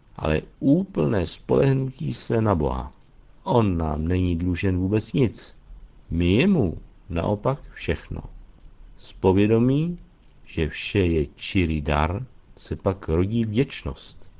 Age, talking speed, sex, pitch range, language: 60-79, 115 wpm, male, 80-125 Hz, Czech